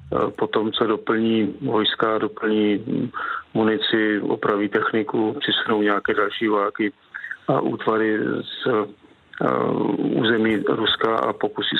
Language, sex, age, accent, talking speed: Czech, male, 40-59, native, 100 wpm